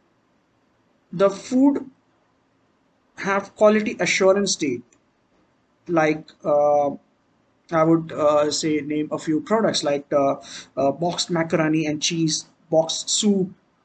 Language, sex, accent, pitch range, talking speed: English, male, Indian, 160-205 Hz, 110 wpm